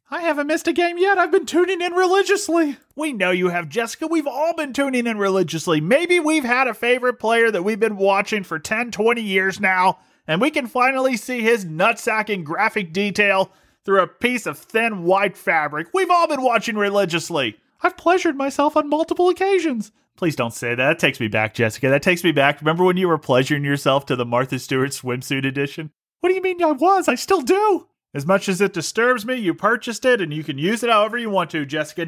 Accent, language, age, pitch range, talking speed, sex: American, English, 30-49, 170-260 Hz, 220 wpm, male